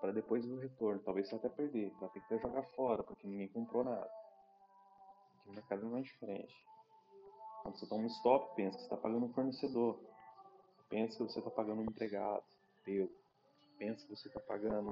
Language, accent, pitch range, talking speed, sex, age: Portuguese, Brazilian, 105-130 Hz, 195 wpm, male, 20-39